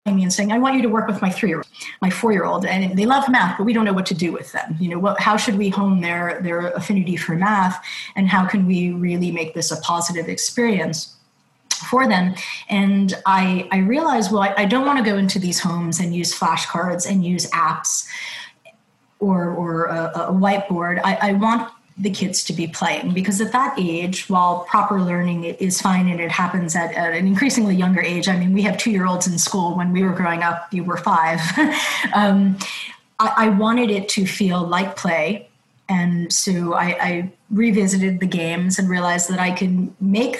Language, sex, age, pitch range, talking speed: English, female, 30-49, 175-200 Hz, 205 wpm